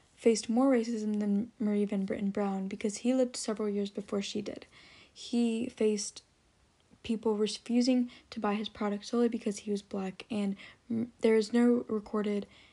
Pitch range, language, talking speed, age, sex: 205-240 Hz, English, 160 wpm, 10-29, female